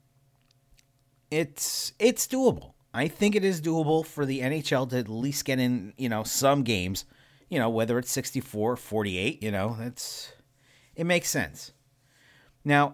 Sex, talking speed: male, 160 wpm